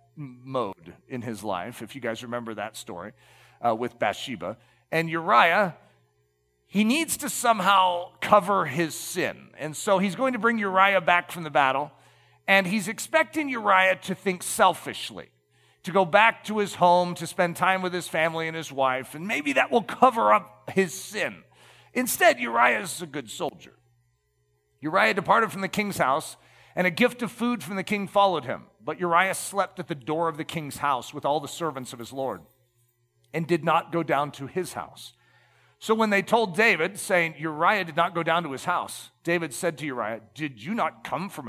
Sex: male